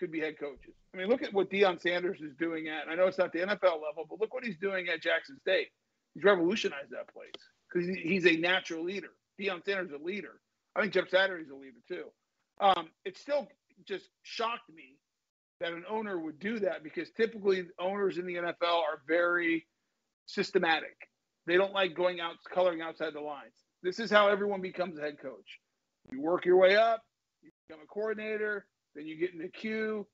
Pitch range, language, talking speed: 165-210 Hz, English, 210 wpm